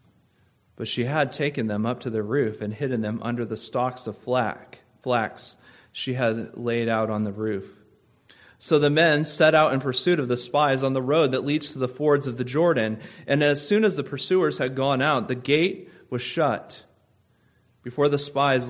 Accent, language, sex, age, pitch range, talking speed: American, English, male, 30-49, 115-140 Hz, 195 wpm